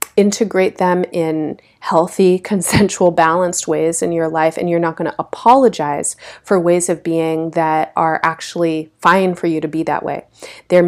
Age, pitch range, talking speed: 30-49, 160-185 Hz, 170 wpm